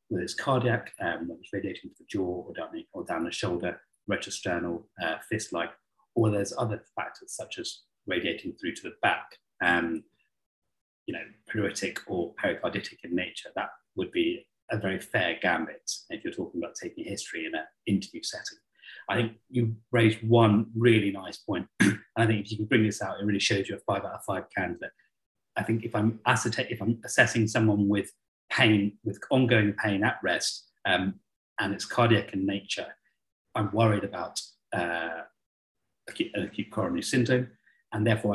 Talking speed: 175 wpm